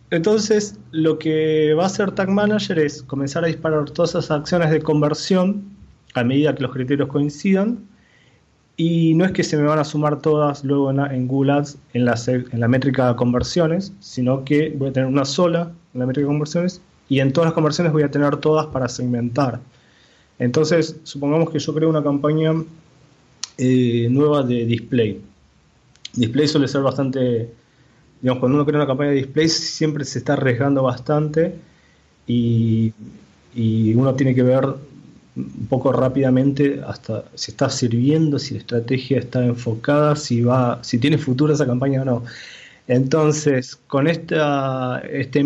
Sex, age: male, 20-39